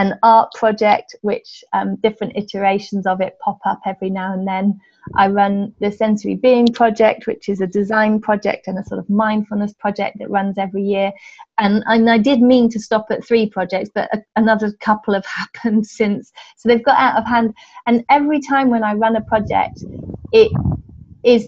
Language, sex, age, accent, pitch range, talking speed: English, female, 30-49, British, 195-225 Hz, 190 wpm